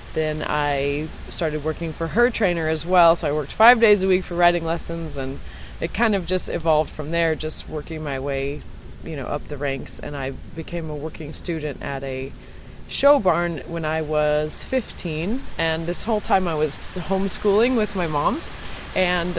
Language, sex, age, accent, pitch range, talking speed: English, female, 20-39, American, 150-185 Hz, 190 wpm